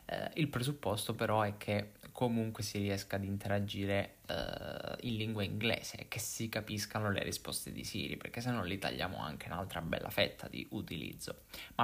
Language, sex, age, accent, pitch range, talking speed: Italian, male, 20-39, native, 100-120 Hz, 165 wpm